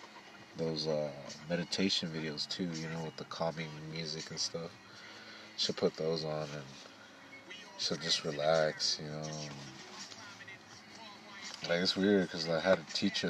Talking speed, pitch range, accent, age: 140 wpm, 75-85 Hz, American, 30-49